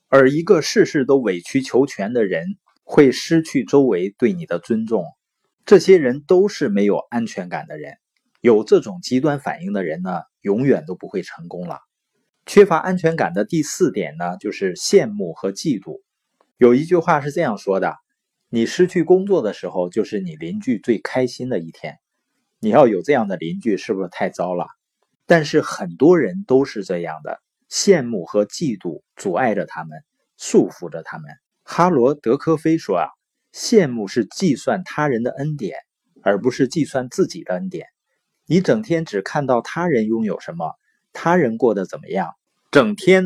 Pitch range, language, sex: 125-180 Hz, Chinese, male